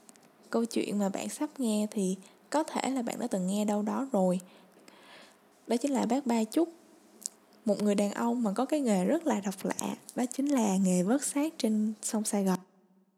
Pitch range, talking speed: 200-255 Hz, 205 wpm